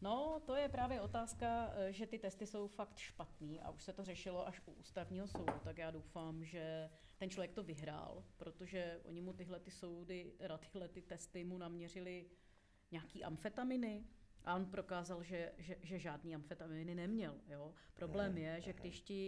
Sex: female